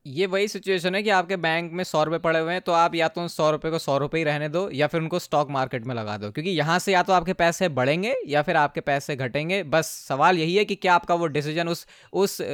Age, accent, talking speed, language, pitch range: 20-39, native, 280 wpm, Hindi, 150-185 Hz